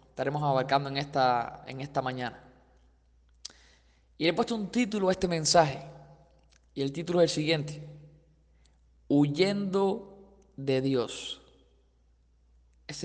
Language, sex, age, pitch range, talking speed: Spanish, male, 20-39, 140-175 Hz, 120 wpm